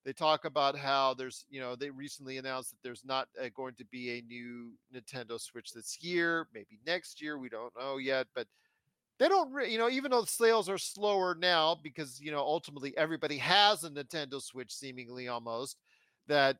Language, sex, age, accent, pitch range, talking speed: English, male, 40-59, American, 130-170 Hz, 195 wpm